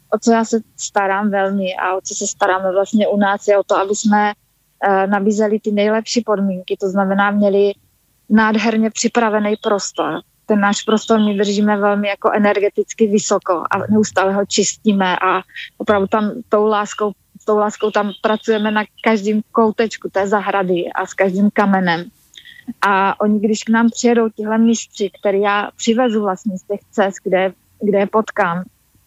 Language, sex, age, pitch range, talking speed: Slovak, female, 20-39, 195-215 Hz, 165 wpm